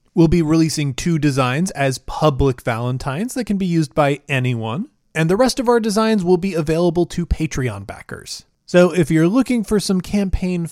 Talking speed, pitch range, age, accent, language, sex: 185 wpm, 135-210 Hz, 30-49, American, English, male